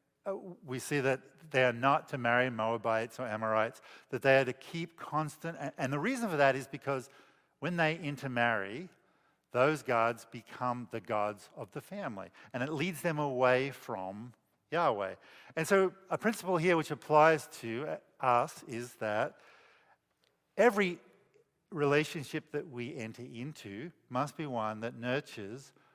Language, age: English, 50-69